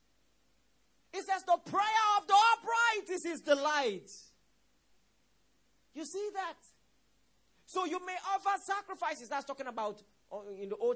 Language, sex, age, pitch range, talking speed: English, male, 40-59, 215-350 Hz, 130 wpm